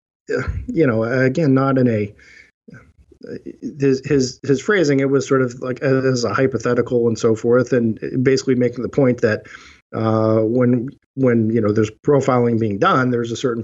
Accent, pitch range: American, 115-135 Hz